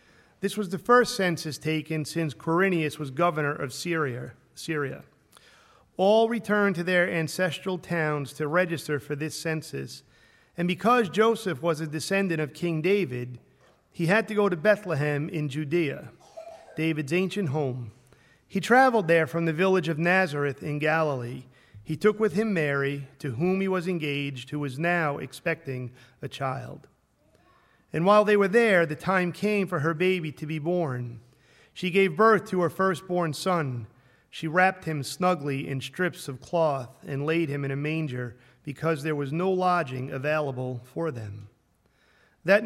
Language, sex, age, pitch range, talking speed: English, male, 40-59, 145-185 Hz, 160 wpm